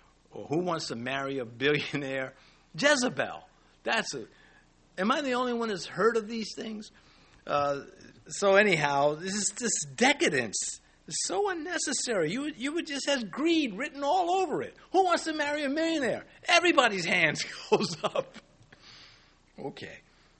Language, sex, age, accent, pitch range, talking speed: English, male, 60-79, American, 135-210 Hz, 155 wpm